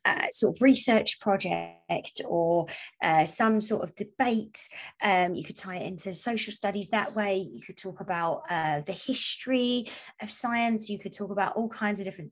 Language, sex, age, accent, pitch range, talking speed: English, female, 20-39, British, 185-225 Hz, 185 wpm